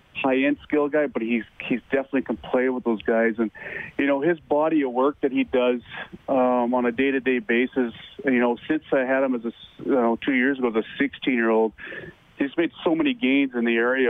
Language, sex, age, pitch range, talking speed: English, male, 30-49, 115-130 Hz, 215 wpm